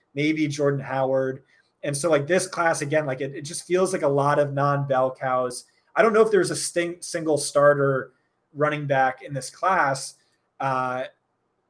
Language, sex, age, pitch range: English, male, 20-39, 135-155 Hz